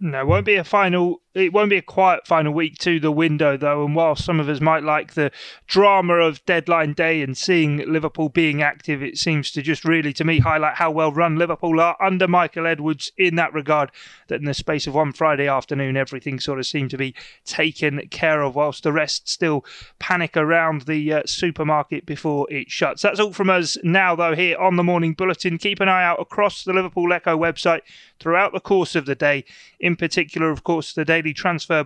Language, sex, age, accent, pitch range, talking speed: English, male, 30-49, British, 150-180 Hz, 215 wpm